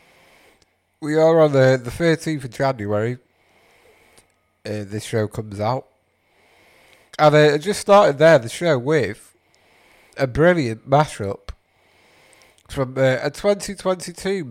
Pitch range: 115-145 Hz